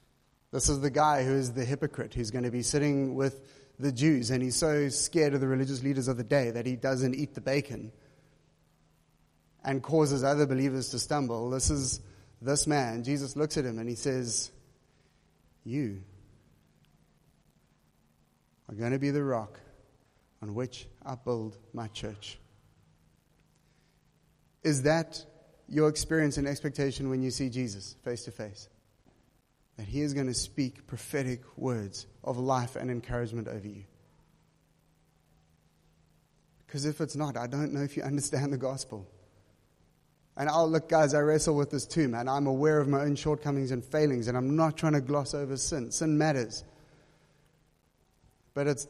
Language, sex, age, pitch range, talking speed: English, male, 30-49, 115-145 Hz, 160 wpm